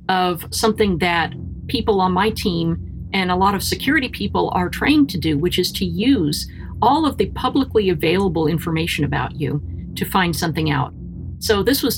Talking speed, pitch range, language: 180 wpm, 155-205 Hz, English